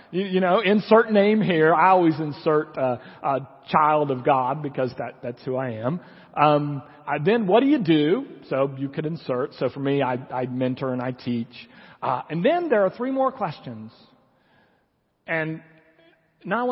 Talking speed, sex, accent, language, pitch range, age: 180 wpm, male, American, English, 125-165 Hz, 50-69